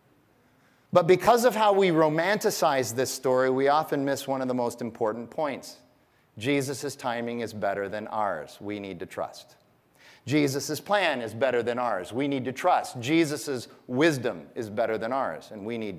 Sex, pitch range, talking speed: male, 120-150 Hz, 175 wpm